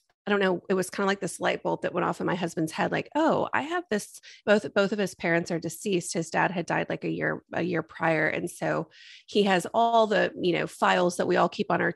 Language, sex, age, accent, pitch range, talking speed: English, female, 30-49, American, 170-200 Hz, 275 wpm